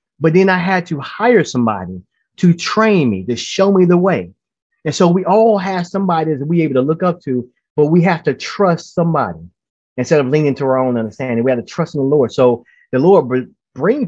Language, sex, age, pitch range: English, male, 30-49, 120-170 Hz